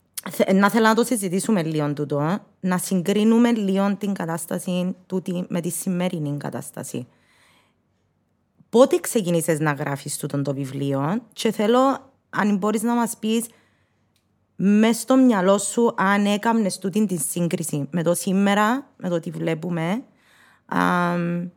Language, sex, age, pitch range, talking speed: Greek, female, 20-39, 160-205 Hz, 135 wpm